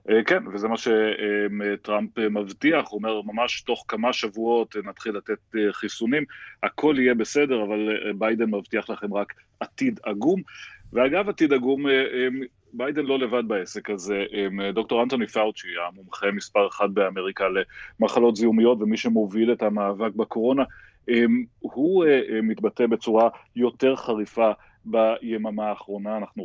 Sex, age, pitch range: male, 30-49, 105-120 Hz